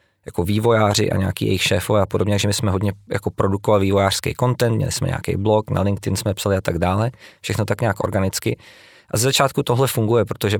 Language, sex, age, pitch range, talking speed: Czech, male, 20-39, 100-115 Hz, 210 wpm